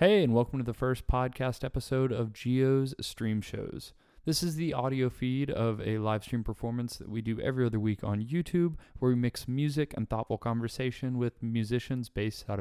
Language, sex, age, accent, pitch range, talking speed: English, male, 20-39, American, 110-130 Hz, 195 wpm